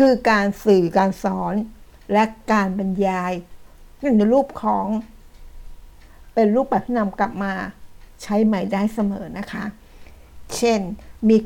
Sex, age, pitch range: female, 60-79, 185-225 Hz